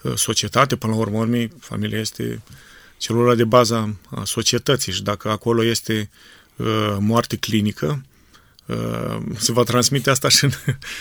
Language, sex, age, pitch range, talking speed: Romanian, male, 30-49, 110-130 Hz, 125 wpm